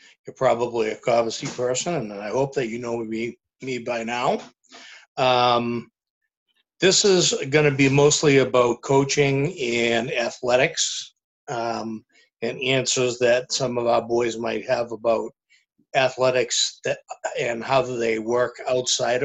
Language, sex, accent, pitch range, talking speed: English, male, American, 115-135 Hz, 140 wpm